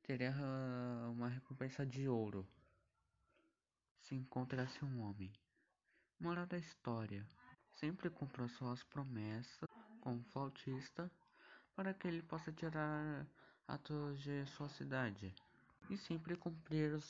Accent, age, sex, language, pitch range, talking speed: Brazilian, 20-39, male, Portuguese, 130-175 Hz, 115 wpm